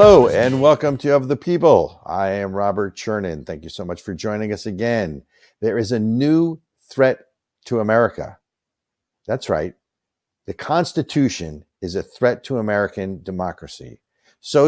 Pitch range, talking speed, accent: 110-150 Hz, 150 wpm, American